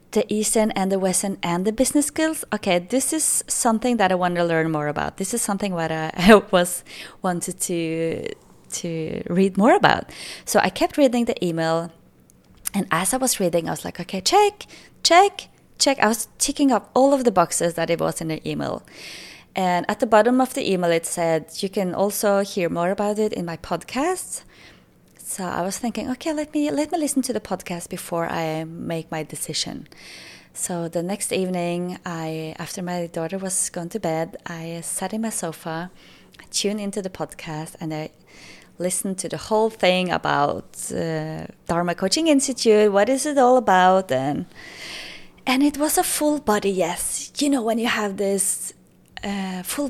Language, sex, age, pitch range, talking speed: English, female, 20-39, 170-230 Hz, 190 wpm